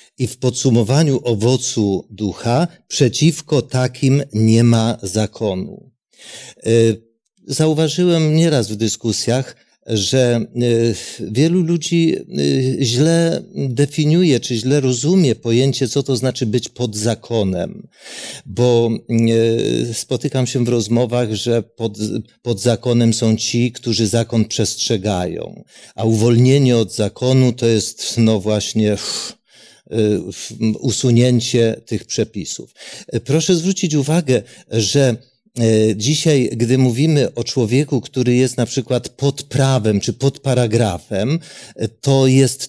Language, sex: Polish, male